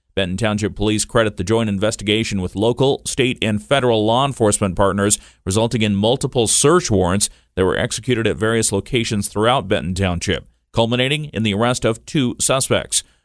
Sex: male